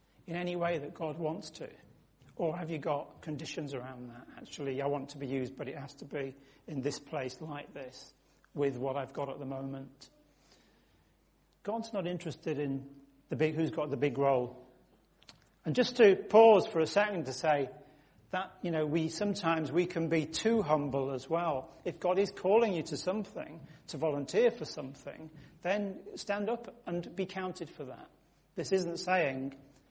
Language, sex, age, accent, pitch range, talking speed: English, male, 40-59, British, 140-185 Hz, 185 wpm